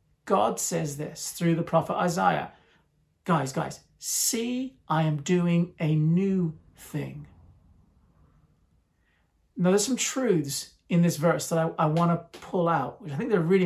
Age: 40-59